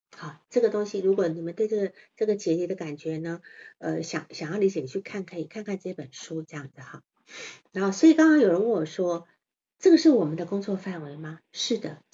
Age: 50-69